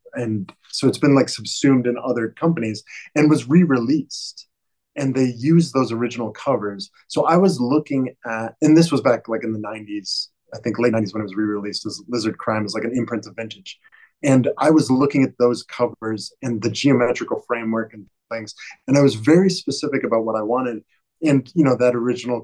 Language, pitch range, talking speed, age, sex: English, 110-135 Hz, 200 wpm, 20-39, male